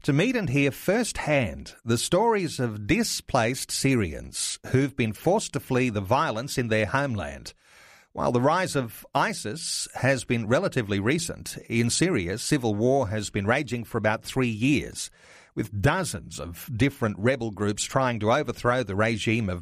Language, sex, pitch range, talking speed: English, male, 115-150 Hz, 160 wpm